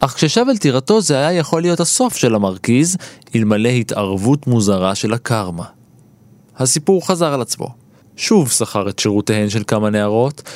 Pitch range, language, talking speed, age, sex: 105-145 Hz, Hebrew, 155 wpm, 20-39, male